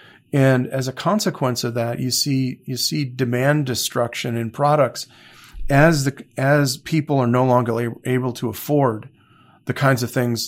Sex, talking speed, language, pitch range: male, 160 wpm, English, 115-135 Hz